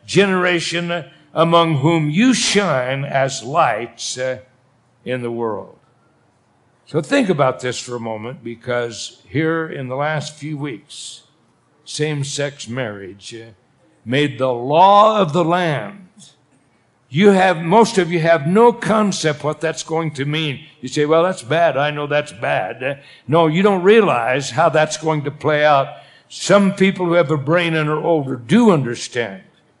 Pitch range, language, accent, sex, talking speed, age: 130-170 Hz, English, American, male, 155 wpm, 60-79